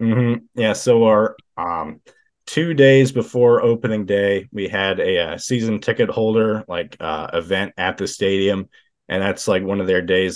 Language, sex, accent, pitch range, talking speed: English, male, American, 95-115 Hz, 180 wpm